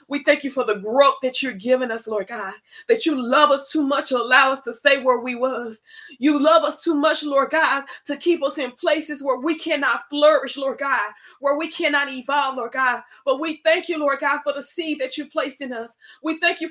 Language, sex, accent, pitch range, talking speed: English, female, American, 275-325 Hz, 240 wpm